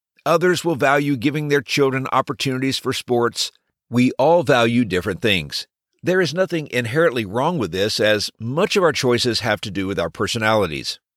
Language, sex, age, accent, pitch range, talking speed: English, male, 50-69, American, 115-155 Hz, 170 wpm